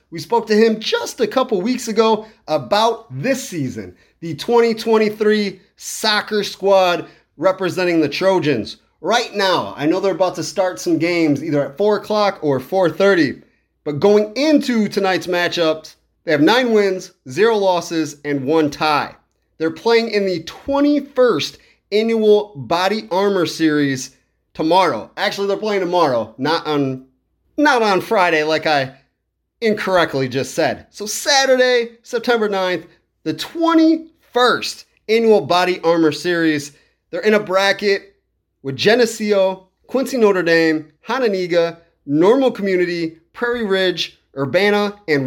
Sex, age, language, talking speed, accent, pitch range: male, 30-49, English, 130 wpm, American, 160-225 Hz